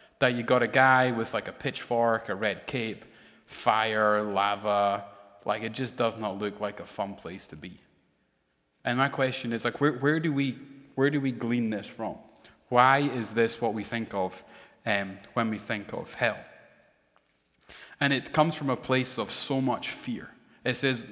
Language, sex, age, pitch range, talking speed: English, male, 30-49, 110-130 Hz, 190 wpm